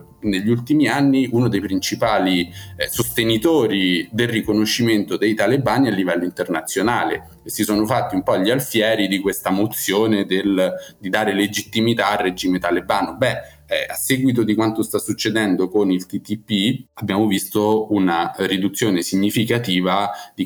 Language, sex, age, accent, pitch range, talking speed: Italian, male, 30-49, native, 100-125 Hz, 145 wpm